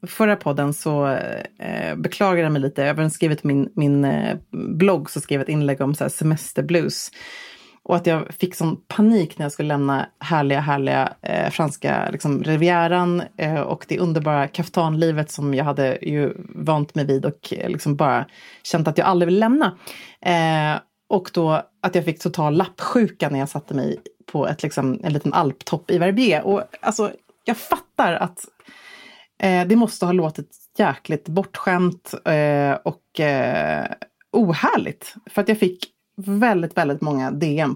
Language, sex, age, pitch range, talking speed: English, female, 30-49, 150-190 Hz, 160 wpm